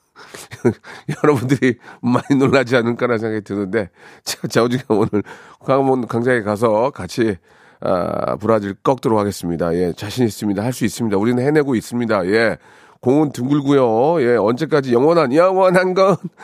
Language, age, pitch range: Korean, 40-59, 110-155 Hz